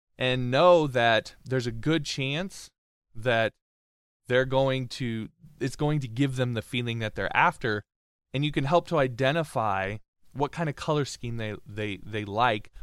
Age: 20-39